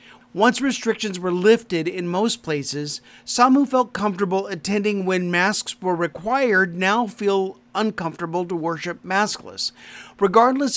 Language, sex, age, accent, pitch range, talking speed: English, male, 40-59, American, 170-215 Hz, 130 wpm